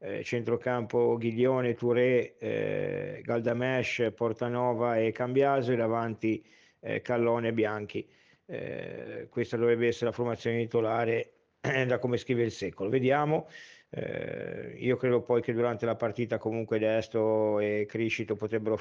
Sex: male